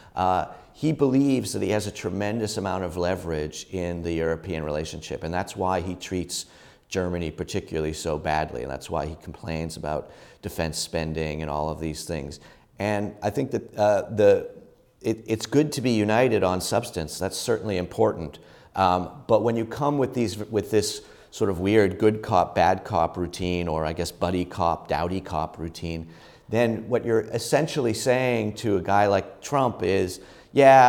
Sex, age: male, 40-59